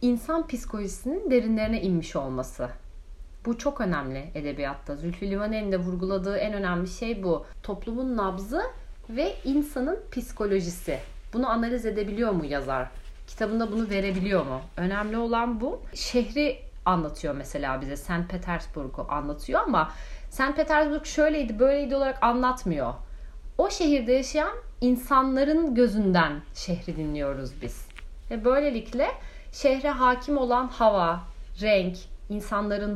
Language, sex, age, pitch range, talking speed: Turkish, female, 40-59, 180-260 Hz, 115 wpm